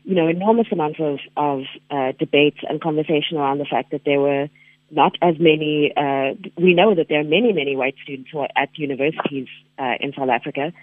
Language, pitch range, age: English, 140-165 Hz, 30-49